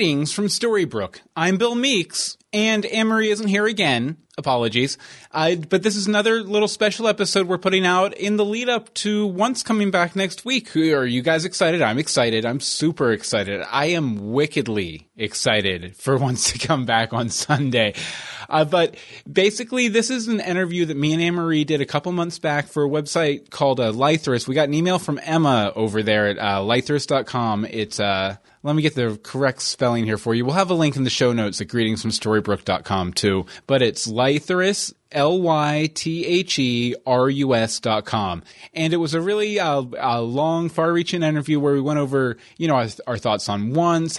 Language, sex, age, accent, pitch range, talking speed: English, male, 30-49, American, 115-180 Hz, 185 wpm